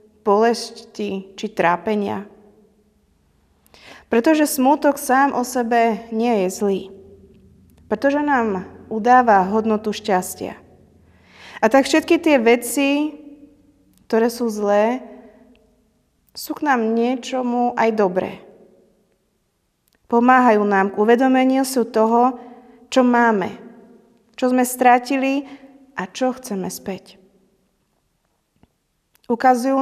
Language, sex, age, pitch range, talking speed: Slovak, female, 30-49, 205-250 Hz, 95 wpm